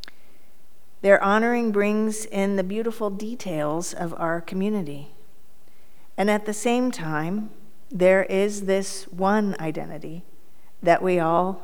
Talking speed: 120 wpm